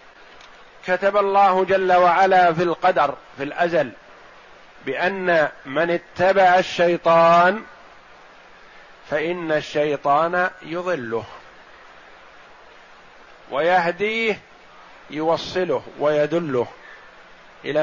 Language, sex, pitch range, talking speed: Arabic, male, 150-180 Hz, 65 wpm